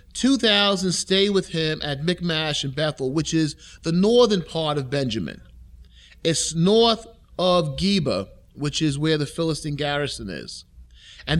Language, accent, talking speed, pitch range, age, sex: English, American, 140 wpm, 120-180 Hz, 30-49, male